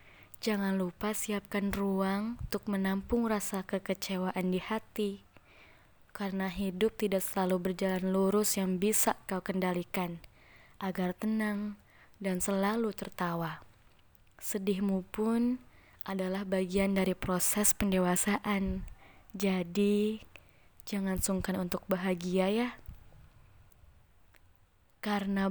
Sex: female